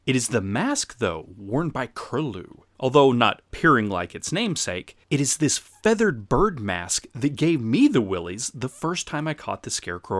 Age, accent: 30-49, American